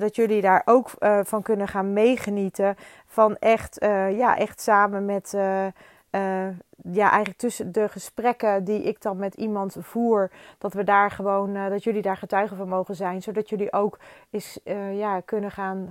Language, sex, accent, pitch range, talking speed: Dutch, female, Dutch, 200-225 Hz, 185 wpm